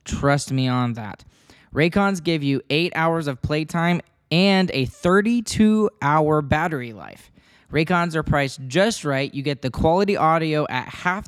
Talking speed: 150 wpm